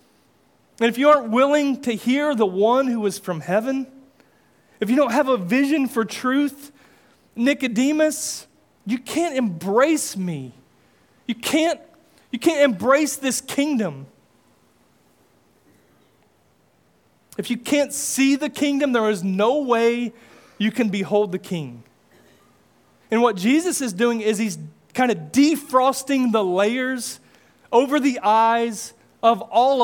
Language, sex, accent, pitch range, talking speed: English, male, American, 195-255 Hz, 130 wpm